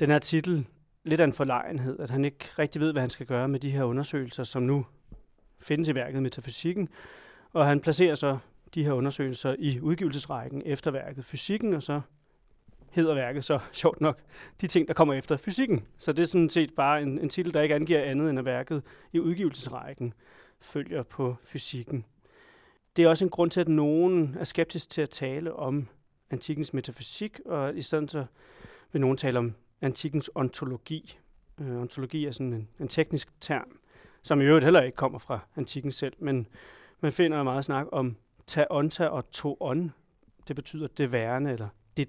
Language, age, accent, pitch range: Danish, 30-49, native, 130-155 Hz